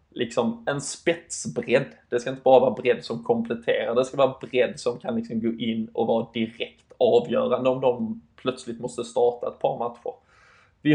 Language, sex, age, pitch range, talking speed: Swedish, male, 20-39, 115-130 Hz, 180 wpm